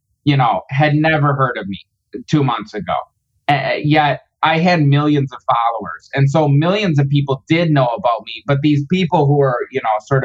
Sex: male